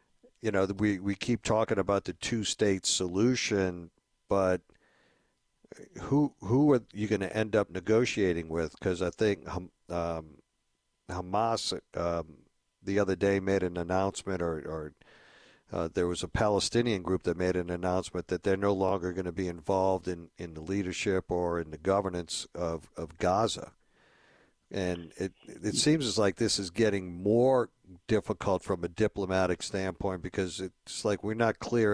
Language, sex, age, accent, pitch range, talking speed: English, male, 50-69, American, 90-105 Hz, 160 wpm